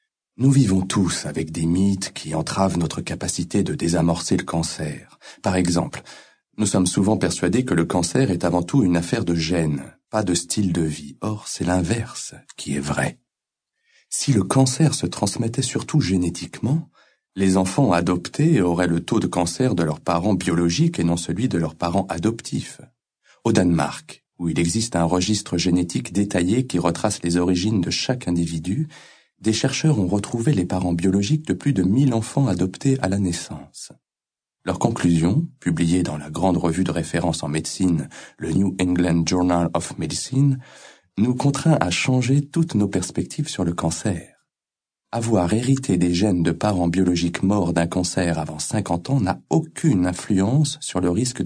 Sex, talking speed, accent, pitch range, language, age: male, 170 wpm, French, 85-115 Hz, French, 40-59